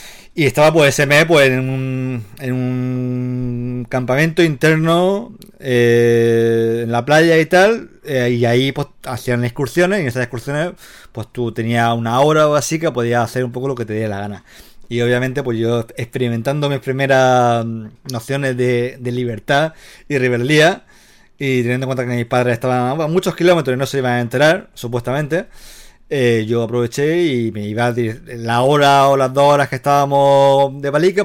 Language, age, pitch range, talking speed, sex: Spanish, 30-49, 120-140 Hz, 180 wpm, male